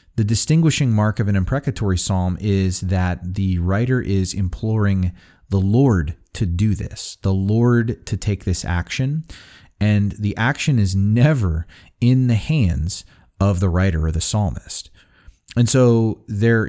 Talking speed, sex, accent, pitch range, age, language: 145 wpm, male, American, 90-115 Hz, 30-49, English